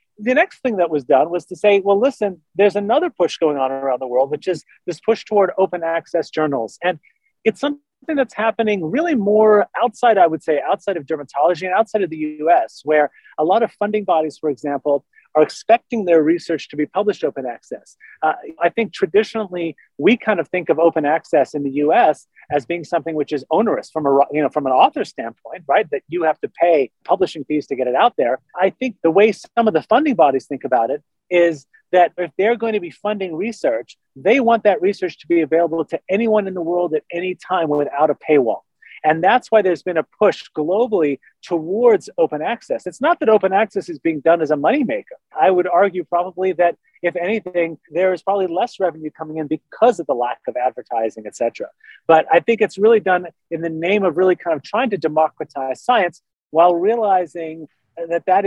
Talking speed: 210 wpm